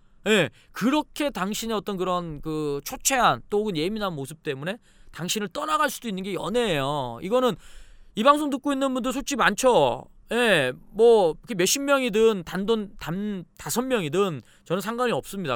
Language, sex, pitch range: Korean, male, 145-230 Hz